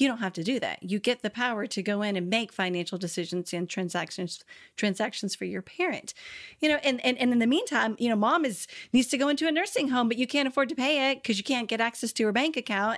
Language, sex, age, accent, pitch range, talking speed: English, female, 40-59, American, 190-255 Hz, 270 wpm